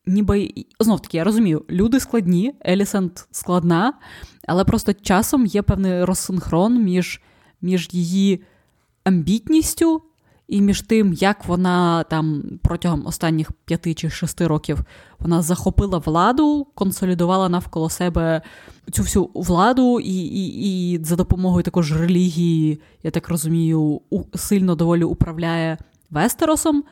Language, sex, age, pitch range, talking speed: Ukrainian, female, 20-39, 165-200 Hz, 115 wpm